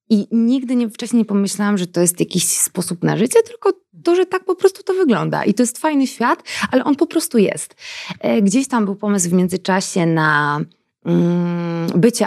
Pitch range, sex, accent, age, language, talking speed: 165-220 Hz, female, native, 20-39, Polish, 185 wpm